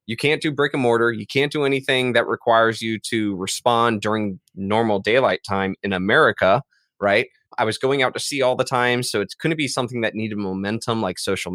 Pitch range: 105-135 Hz